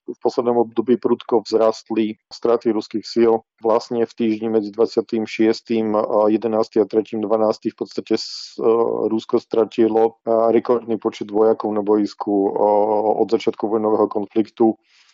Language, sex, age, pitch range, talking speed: Slovak, male, 40-59, 110-115 Hz, 120 wpm